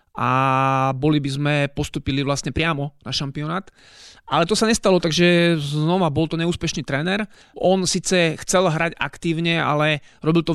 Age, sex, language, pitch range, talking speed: 30-49, male, Slovak, 145-180 Hz, 155 wpm